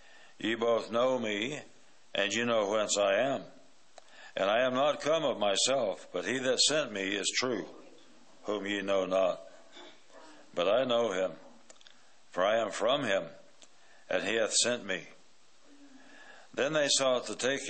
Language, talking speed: English, 160 wpm